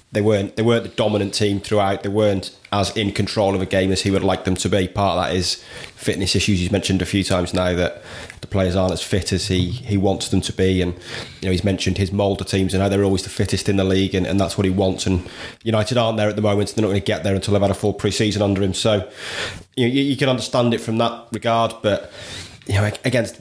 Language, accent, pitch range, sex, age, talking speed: English, British, 95-110 Hz, male, 20-39, 280 wpm